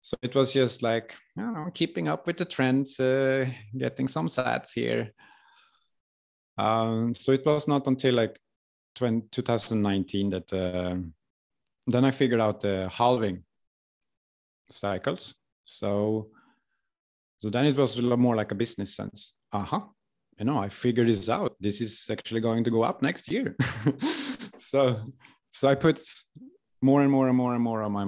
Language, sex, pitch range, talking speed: English, male, 100-130 Hz, 160 wpm